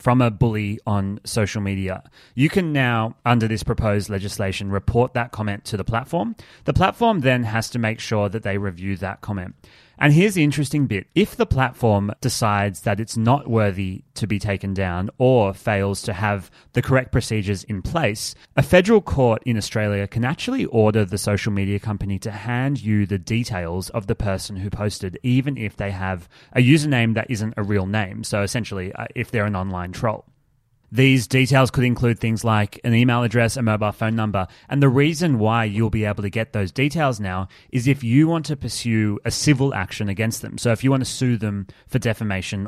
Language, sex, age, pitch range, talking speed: English, male, 30-49, 105-130 Hz, 200 wpm